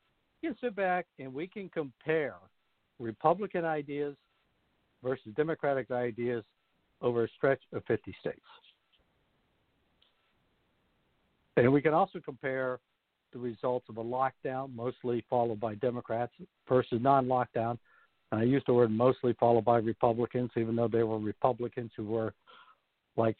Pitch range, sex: 115-145 Hz, male